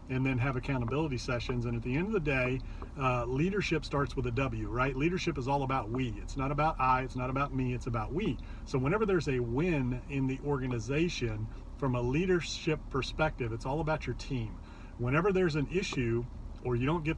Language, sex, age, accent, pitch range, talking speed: English, male, 40-59, American, 120-155 Hz, 210 wpm